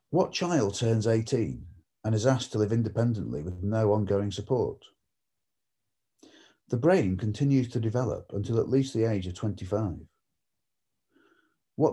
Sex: male